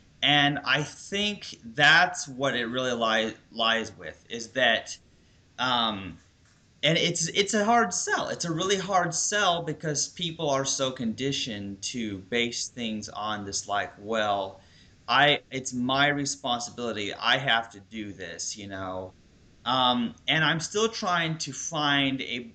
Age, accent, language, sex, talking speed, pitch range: 30-49, American, English, male, 145 wpm, 100-145 Hz